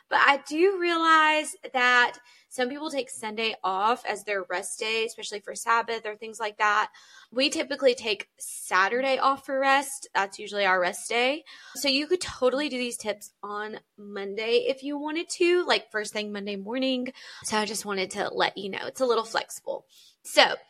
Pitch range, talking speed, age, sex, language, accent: 195-265 Hz, 185 wpm, 20-39, female, English, American